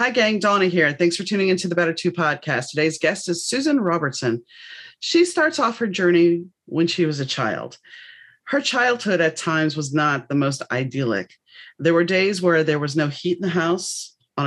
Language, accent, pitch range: English, American, 135-185 Hz